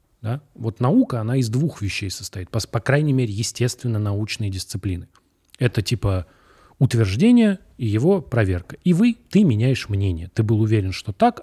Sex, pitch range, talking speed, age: male, 100-135 Hz, 165 wpm, 30-49